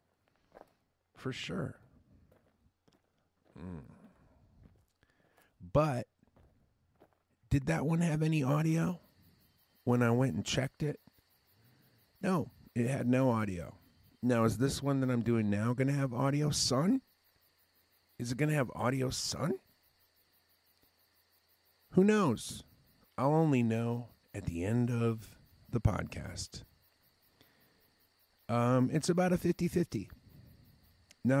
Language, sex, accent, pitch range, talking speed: English, male, American, 95-140 Hz, 115 wpm